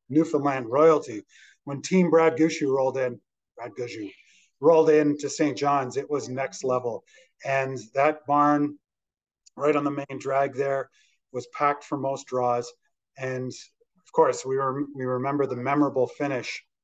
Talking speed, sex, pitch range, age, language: 150 wpm, male, 135-165 Hz, 30-49, English